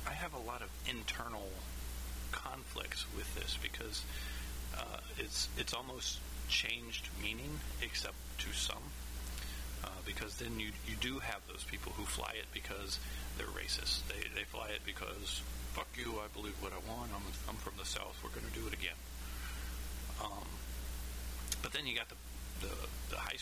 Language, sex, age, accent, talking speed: English, male, 40-59, American, 170 wpm